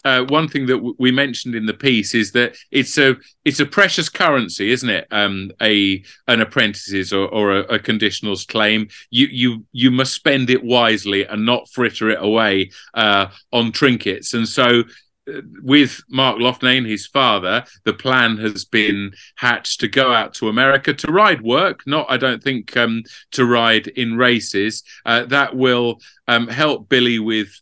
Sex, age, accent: male, 40-59, British